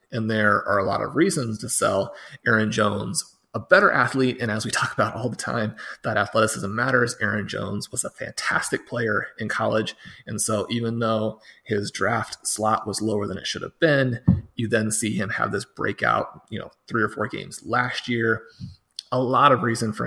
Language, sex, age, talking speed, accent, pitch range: English, male, 30-49, 200 wpm, American, 110-130 Hz